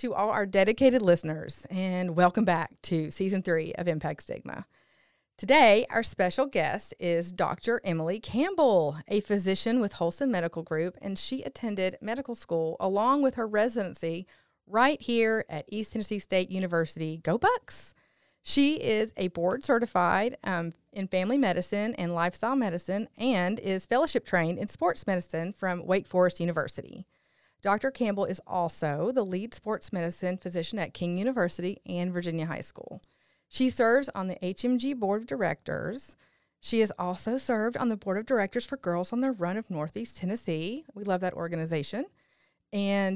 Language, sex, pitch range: English, female, 175-230 Hz